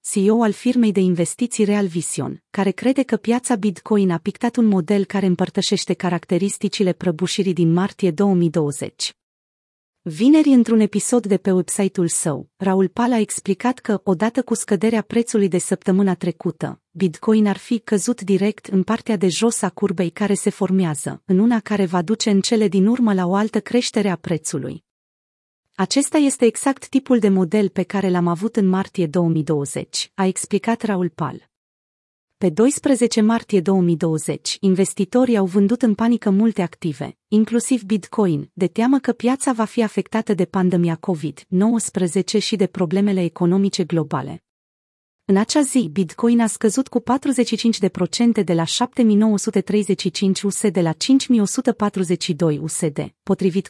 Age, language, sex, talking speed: 30-49, Romanian, female, 150 wpm